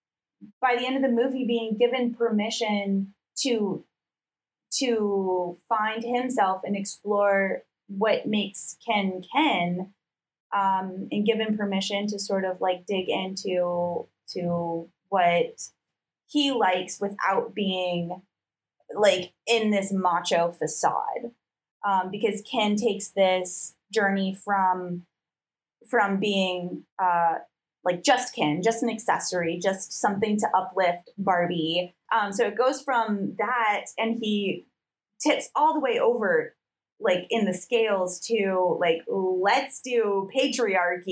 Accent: American